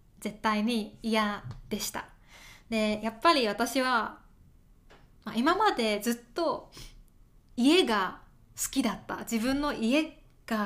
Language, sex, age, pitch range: Japanese, female, 20-39, 210-260 Hz